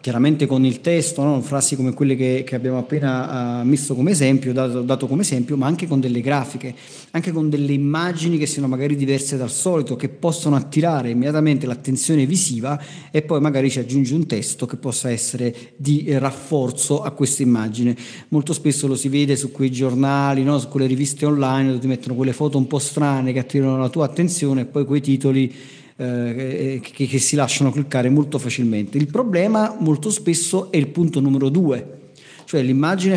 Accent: native